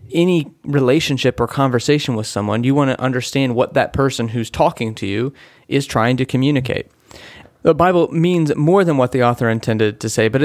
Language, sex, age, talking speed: English, male, 30-49, 190 wpm